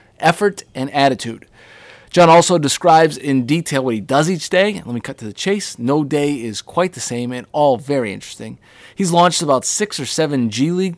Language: English